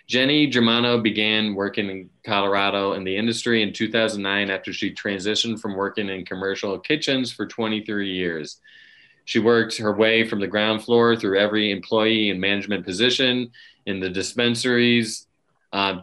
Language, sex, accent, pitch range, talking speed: English, male, American, 95-115 Hz, 150 wpm